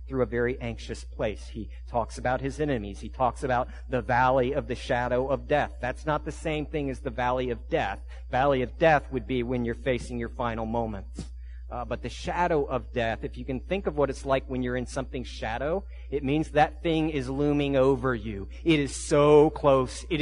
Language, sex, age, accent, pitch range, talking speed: English, male, 40-59, American, 115-150 Hz, 215 wpm